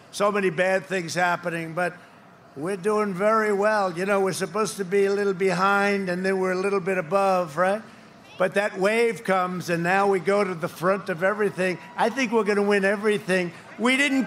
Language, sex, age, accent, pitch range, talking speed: English, male, 50-69, American, 195-245 Hz, 205 wpm